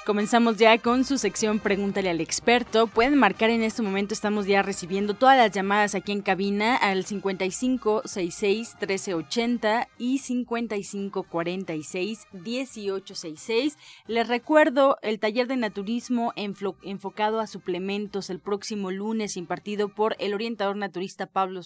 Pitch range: 190-235 Hz